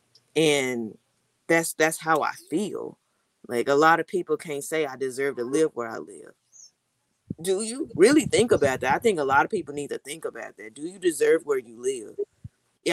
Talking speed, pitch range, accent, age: 205 wpm, 155-225 Hz, American, 20-39